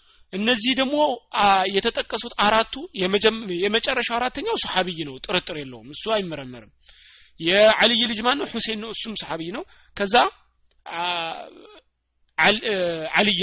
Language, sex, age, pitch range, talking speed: Amharic, male, 30-49, 160-200 Hz, 85 wpm